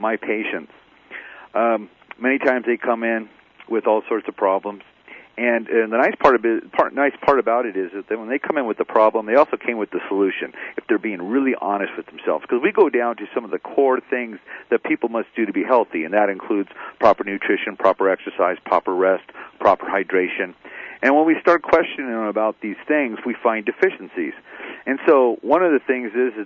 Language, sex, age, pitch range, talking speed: English, male, 40-59, 105-160 Hz, 205 wpm